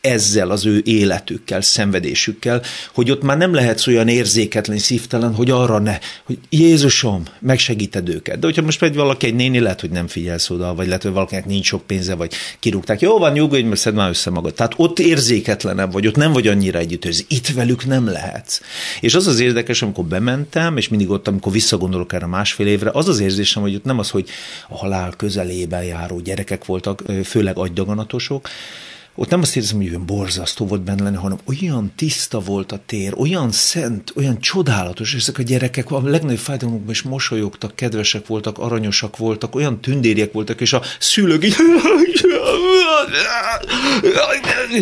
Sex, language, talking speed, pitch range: male, Hungarian, 180 wpm, 100-130 Hz